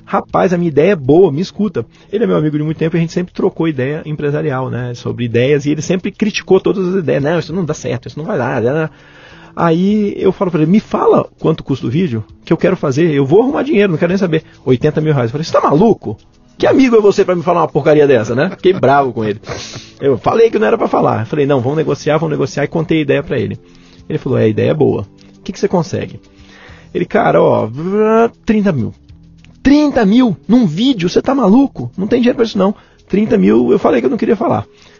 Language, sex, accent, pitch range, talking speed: Portuguese, male, Brazilian, 140-210 Hz, 250 wpm